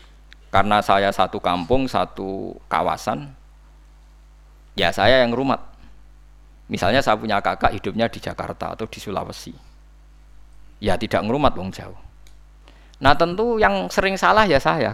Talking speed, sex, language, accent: 130 wpm, male, Indonesian, native